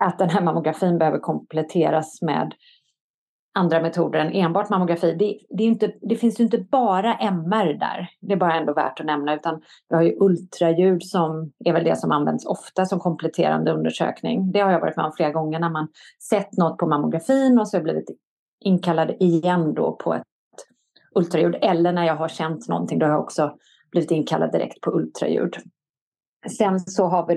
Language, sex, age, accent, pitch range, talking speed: Swedish, female, 30-49, native, 165-200 Hz, 195 wpm